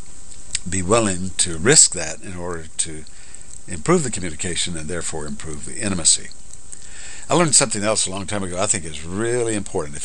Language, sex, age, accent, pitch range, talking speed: English, male, 60-79, American, 85-110 Hz, 180 wpm